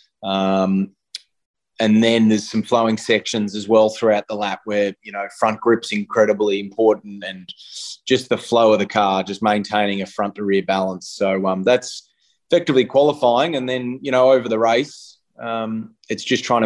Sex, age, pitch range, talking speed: male, 20-39, 100-130 Hz, 170 wpm